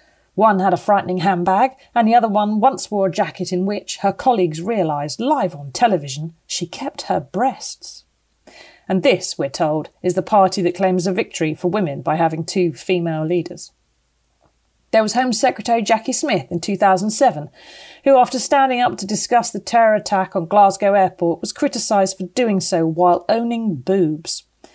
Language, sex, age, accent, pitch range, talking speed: English, female, 40-59, British, 170-225 Hz, 170 wpm